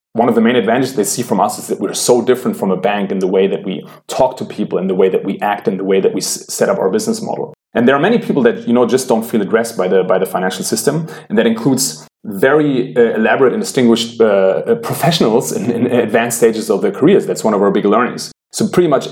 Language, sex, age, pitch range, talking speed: English, male, 30-49, 105-135 Hz, 265 wpm